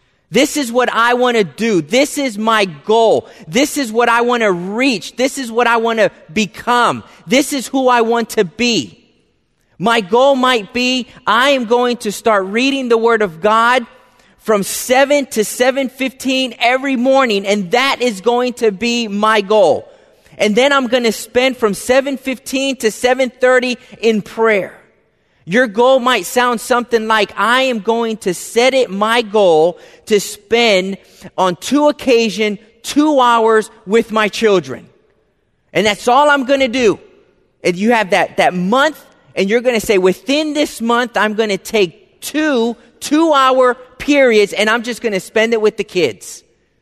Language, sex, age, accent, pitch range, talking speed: English, male, 30-49, American, 215-255 Hz, 175 wpm